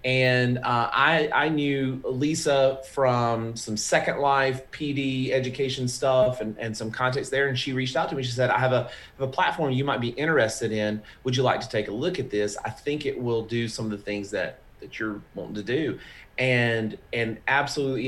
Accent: American